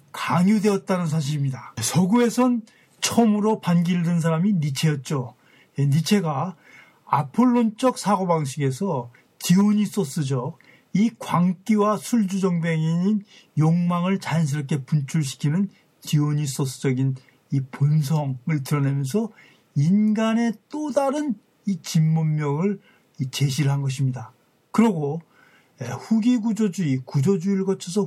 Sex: male